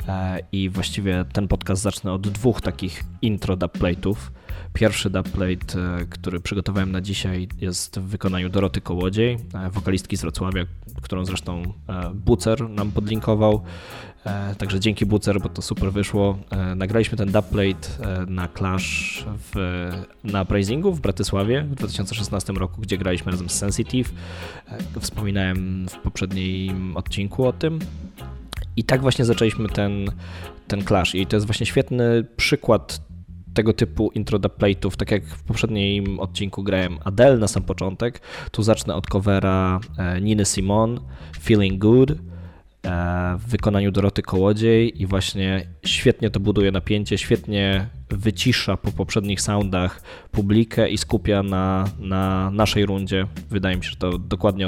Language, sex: Polish, male